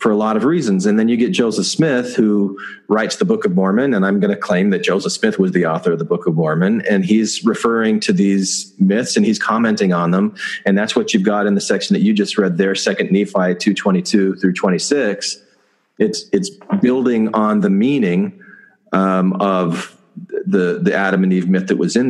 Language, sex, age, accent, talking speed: English, male, 40-59, American, 215 wpm